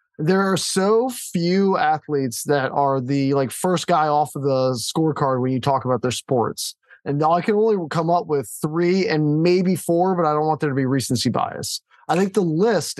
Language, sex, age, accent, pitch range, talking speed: English, male, 20-39, American, 145-175 Hz, 210 wpm